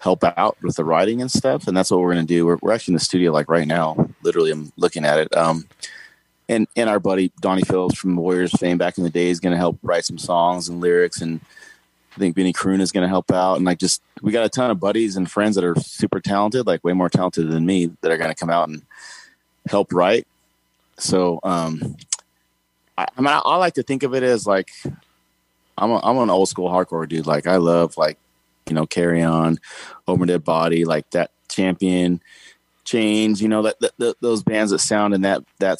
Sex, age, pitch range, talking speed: male, 30-49, 85-100 Hz, 235 wpm